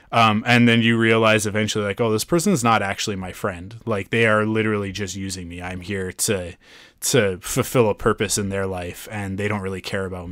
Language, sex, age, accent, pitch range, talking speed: English, male, 20-39, American, 100-120 Hz, 220 wpm